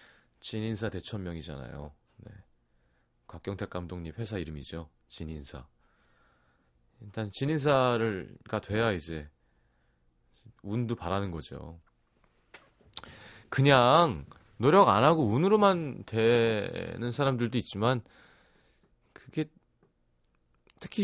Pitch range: 80-135 Hz